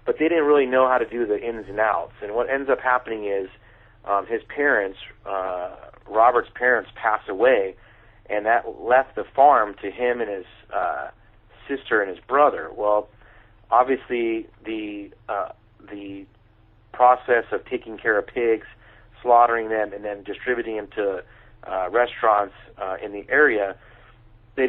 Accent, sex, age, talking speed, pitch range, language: American, male, 40-59, 160 wpm, 105-120 Hz, English